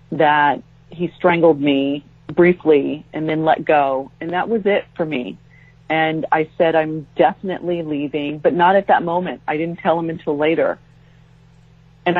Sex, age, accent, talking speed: female, 40-59, American, 160 wpm